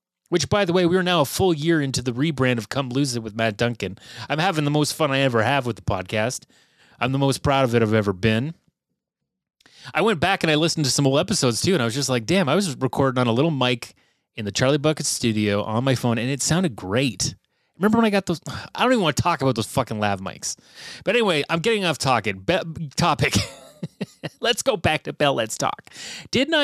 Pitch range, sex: 125-175 Hz, male